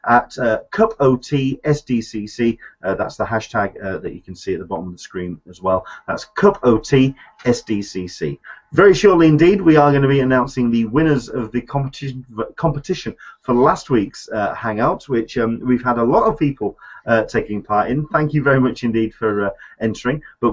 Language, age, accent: English, 30-49, British